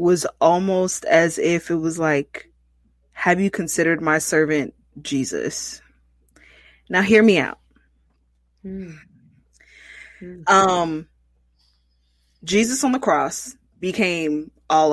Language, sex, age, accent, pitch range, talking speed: English, female, 20-39, American, 130-200 Hz, 95 wpm